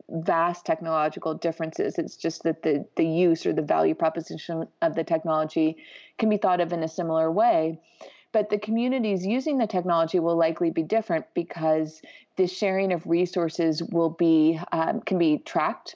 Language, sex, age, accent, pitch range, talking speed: English, female, 30-49, American, 160-190 Hz, 170 wpm